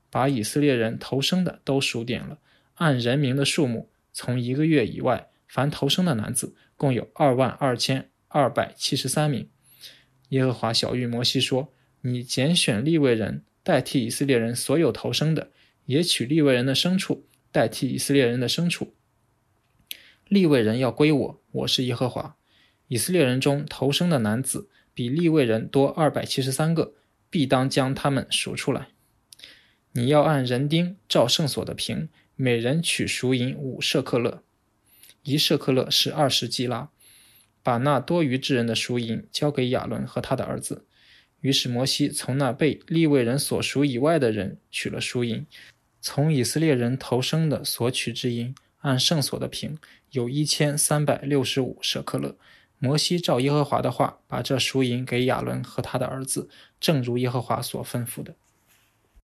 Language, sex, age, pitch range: English, male, 20-39, 120-145 Hz